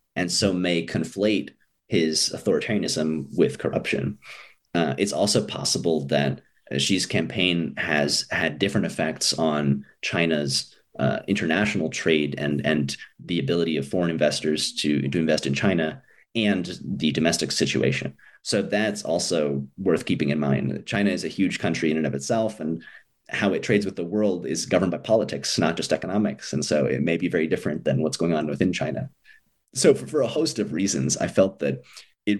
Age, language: 30-49, English